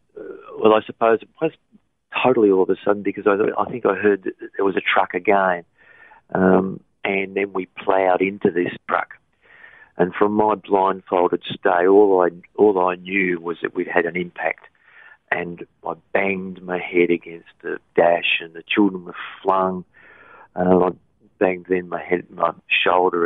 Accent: Australian